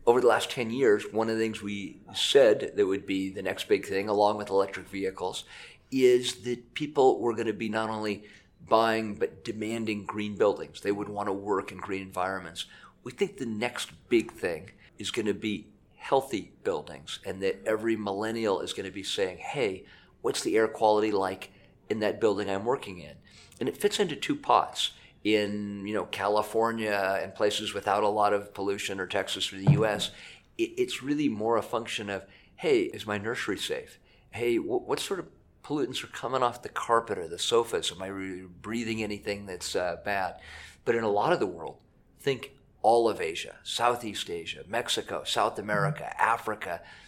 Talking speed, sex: 185 wpm, male